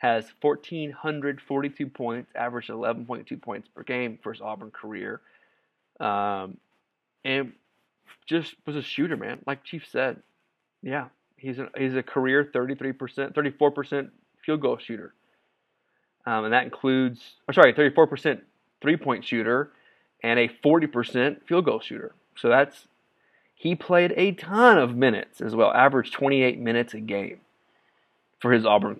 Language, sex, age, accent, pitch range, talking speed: English, male, 30-49, American, 120-150 Hz, 155 wpm